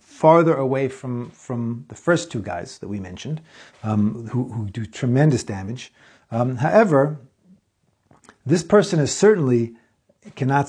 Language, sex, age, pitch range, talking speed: English, male, 50-69, 115-160 Hz, 135 wpm